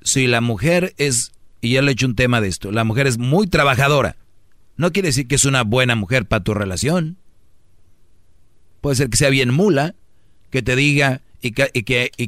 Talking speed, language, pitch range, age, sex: 210 wpm, Spanish, 105-140 Hz, 40-59, male